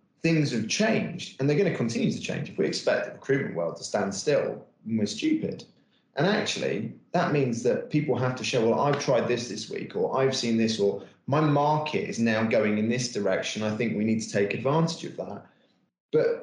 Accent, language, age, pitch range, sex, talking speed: British, English, 30-49, 110-150 Hz, male, 215 wpm